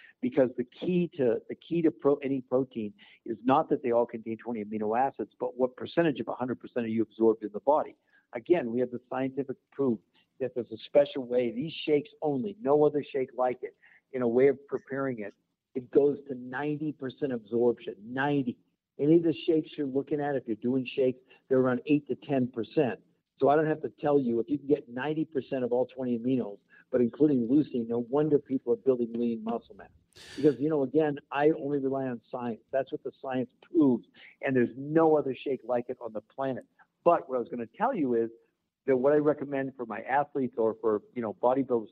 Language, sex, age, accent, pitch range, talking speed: English, male, 50-69, American, 120-150 Hz, 215 wpm